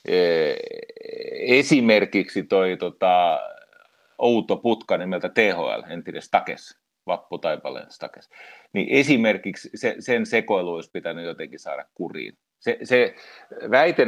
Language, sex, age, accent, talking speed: Finnish, male, 40-59, native, 95 wpm